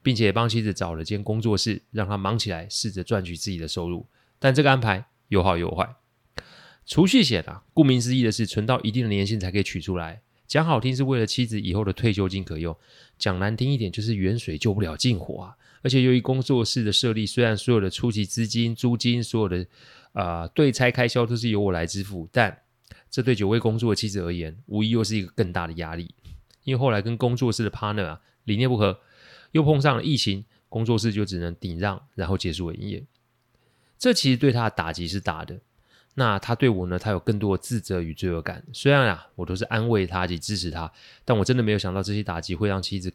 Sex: male